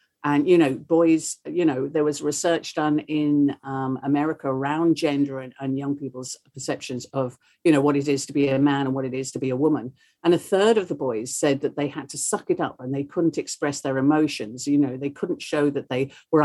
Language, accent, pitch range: English, British, 140-185 Hz